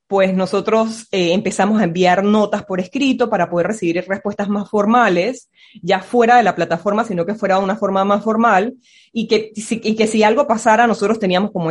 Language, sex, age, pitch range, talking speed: Spanish, female, 20-39, 190-225 Hz, 190 wpm